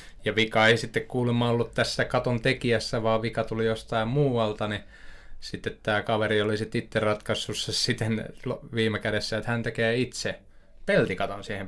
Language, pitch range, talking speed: Finnish, 100-115 Hz, 155 wpm